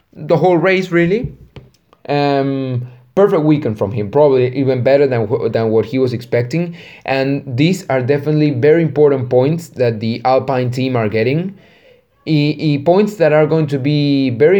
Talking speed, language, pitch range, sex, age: 165 wpm, English, 115-150 Hz, male, 20-39